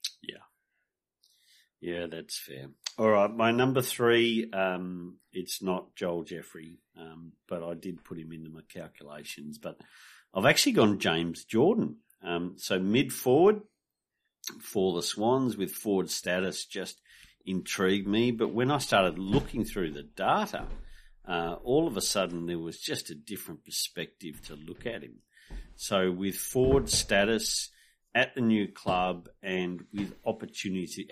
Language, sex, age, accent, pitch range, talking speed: English, male, 50-69, Australian, 85-115 Hz, 145 wpm